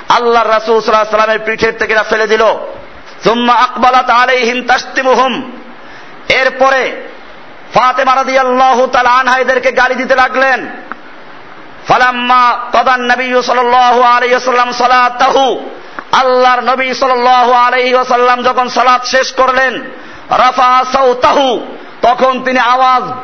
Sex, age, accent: male, 50-69, native